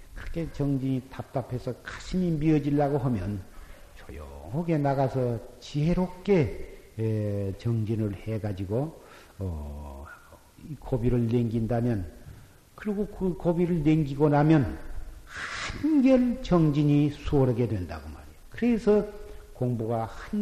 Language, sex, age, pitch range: Korean, male, 50-69, 115-165 Hz